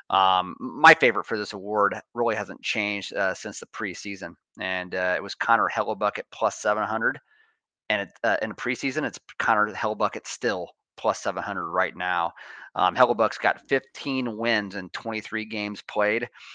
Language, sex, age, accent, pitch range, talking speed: English, male, 30-49, American, 100-120 Hz, 165 wpm